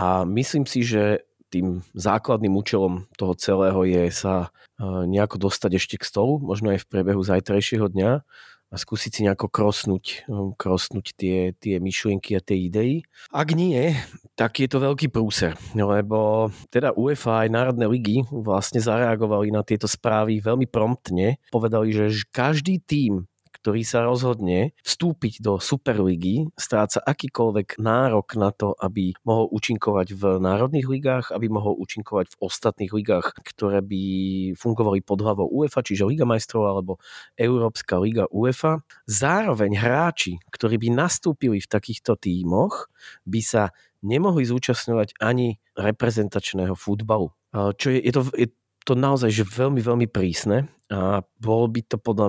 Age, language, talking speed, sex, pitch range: 30-49, Slovak, 145 wpm, male, 100-120 Hz